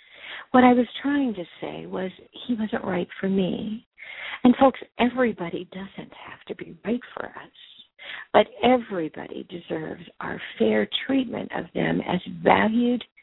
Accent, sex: American, female